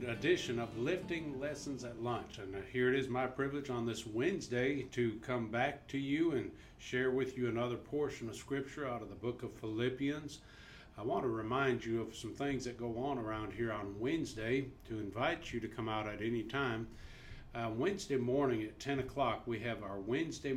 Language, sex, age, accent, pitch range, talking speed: English, male, 50-69, American, 115-130 Hz, 200 wpm